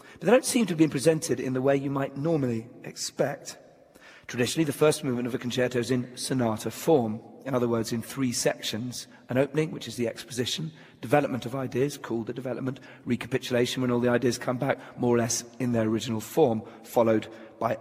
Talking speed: 200 wpm